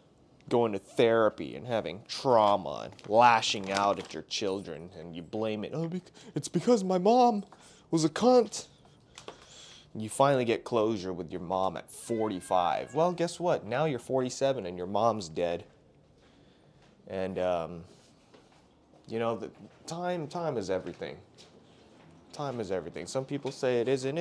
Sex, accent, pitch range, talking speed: male, American, 100-135 Hz, 150 wpm